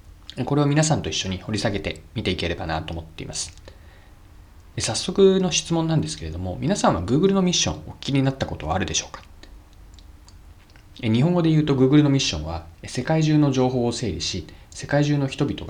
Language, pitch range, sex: Japanese, 85-130 Hz, male